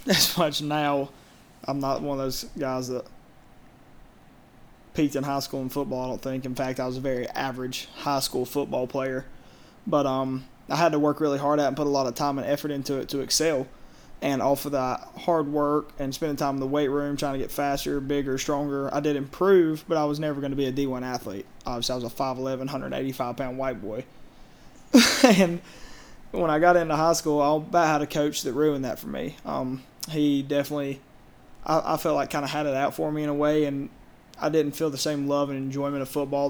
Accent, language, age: American, English, 20-39